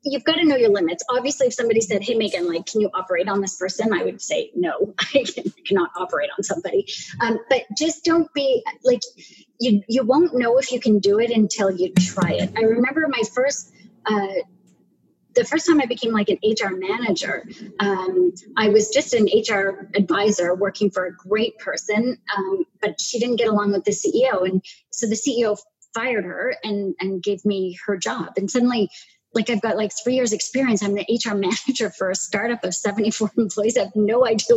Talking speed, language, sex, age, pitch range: 205 wpm, English, female, 30-49, 200-250 Hz